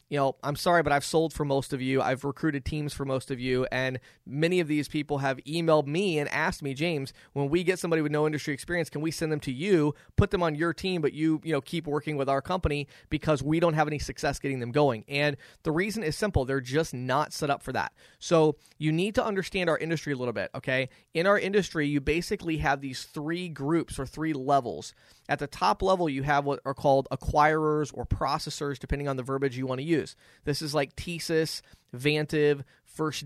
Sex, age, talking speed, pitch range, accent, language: male, 30-49, 230 wpm, 135-160 Hz, American, English